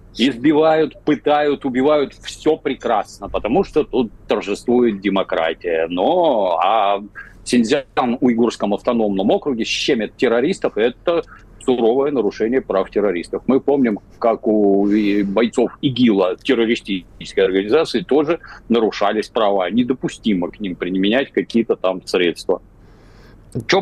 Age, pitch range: 50-69, 105-140 Hz